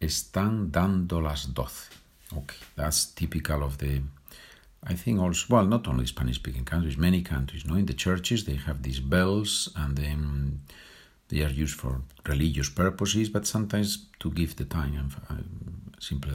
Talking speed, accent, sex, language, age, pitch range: 160 wpm, Spanish, male, Spanish, 50-69, 70-90 Hz